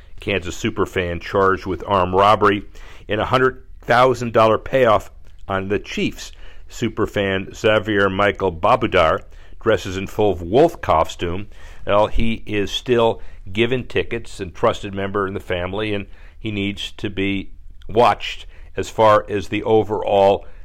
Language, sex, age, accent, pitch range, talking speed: English, male, 50-69, American, 85-110 Hz, 135 wpm